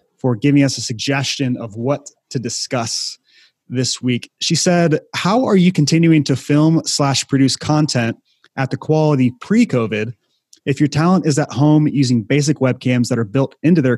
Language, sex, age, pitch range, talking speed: English, male, 30-49, 120-150 Hz, 170 wpm